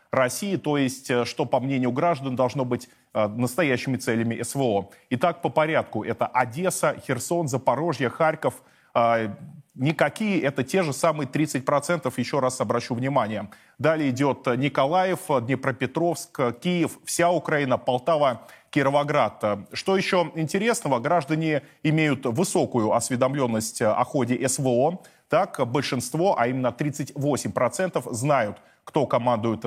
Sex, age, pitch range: male, 20-39, 125-160 Hz